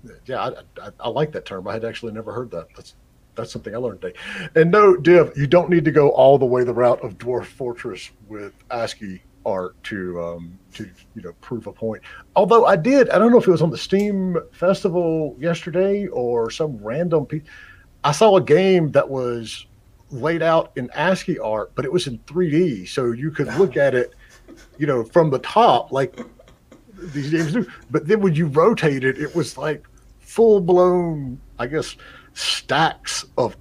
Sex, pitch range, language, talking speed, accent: male, 120-180 Hz, English, 200 wpm, American